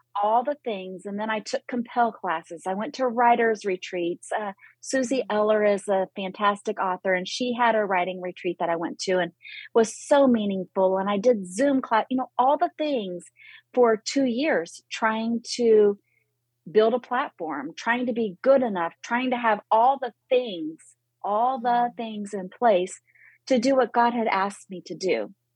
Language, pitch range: English, 195-255 Hz